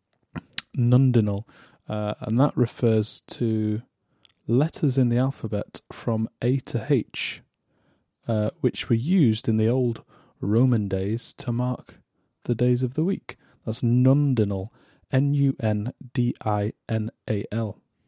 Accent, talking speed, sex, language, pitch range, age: British, 105 wpm, male, English, 110-135 Hz, 30-49